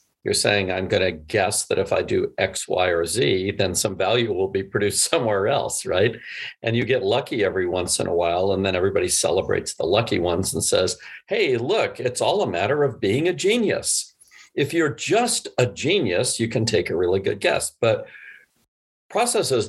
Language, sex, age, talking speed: English, male, 50-69, 200 wpm